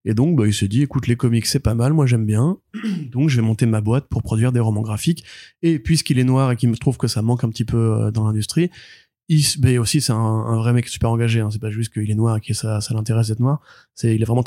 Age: 20-39